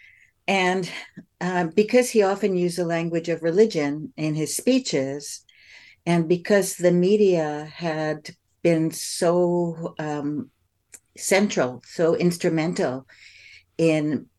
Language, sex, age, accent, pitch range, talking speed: English, female, 60-79, American, 150-185 Hz, 105 wpm